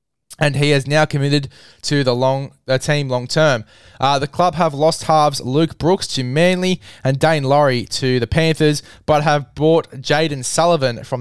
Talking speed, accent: 180 wpm, Australian